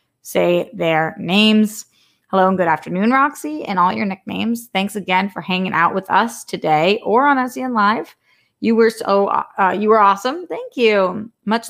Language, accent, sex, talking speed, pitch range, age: English, American, female, 175 wpm, 180-215 Hz, 20-39